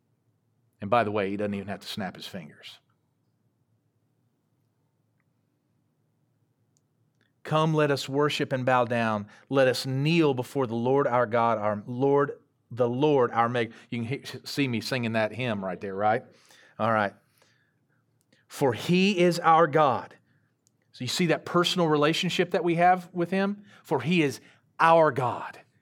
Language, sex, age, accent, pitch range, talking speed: English, male, 40-59, American, 125-170 Hz, 150 wpm